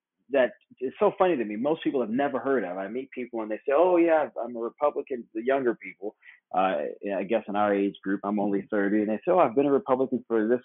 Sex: male